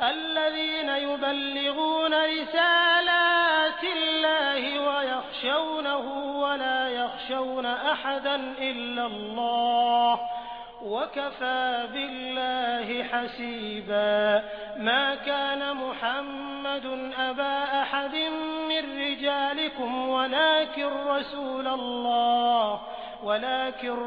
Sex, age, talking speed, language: male, 30-49, 60 wpm, Hindi